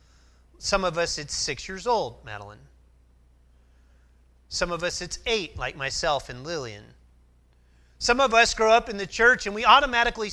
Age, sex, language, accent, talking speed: 30-49, male, English, American, 165 wpm